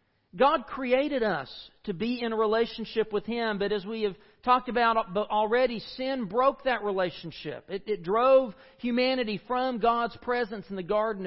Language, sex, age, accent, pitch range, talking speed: English, male, 40-59, American, 190-245 Hz, 165 wpm